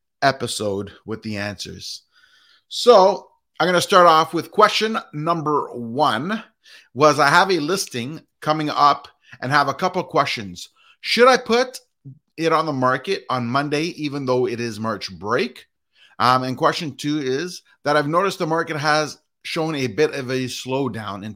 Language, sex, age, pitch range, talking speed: English, male, 30-49, 120-160 Hz, 165 wpm